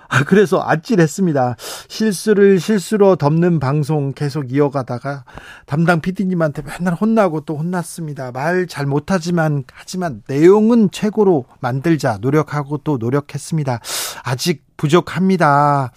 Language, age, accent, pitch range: Korean, 40-59, native, 140-180 Hz